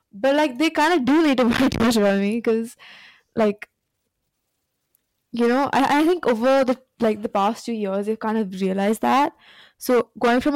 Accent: Indian